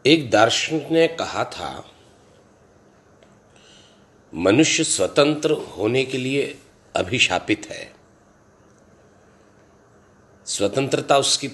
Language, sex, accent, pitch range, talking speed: Hindi, male, native, 100-150 Hz, 75 wpm